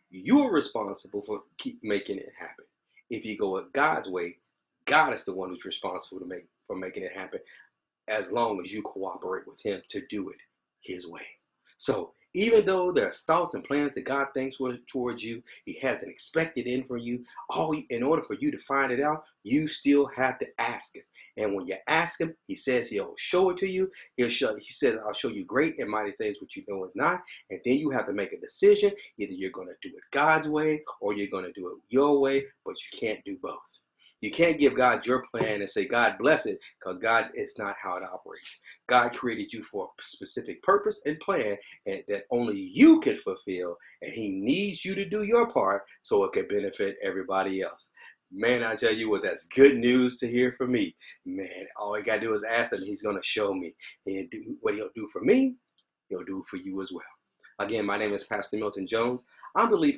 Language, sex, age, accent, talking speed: English, male, 40-59, American, 225 wpm